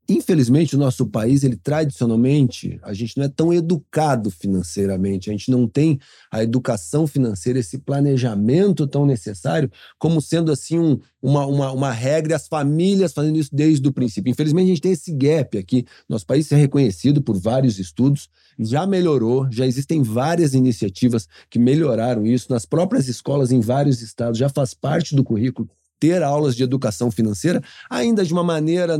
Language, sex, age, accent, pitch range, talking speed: Portuguese, male, 40-59, Brazilian, 125-155 Hz, 170 wpm